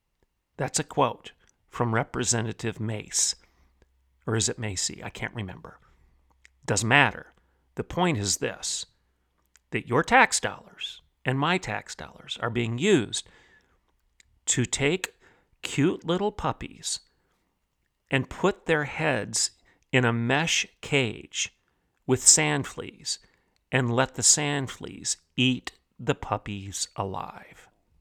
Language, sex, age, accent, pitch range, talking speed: English, male, 50-69, American, 100-130 Hz, 120 wpm